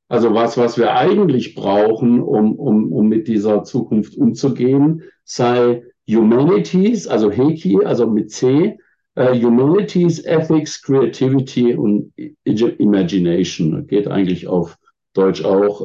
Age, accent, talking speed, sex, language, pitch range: 50-69, German, 115 wpm, male, English, 100-140 Hz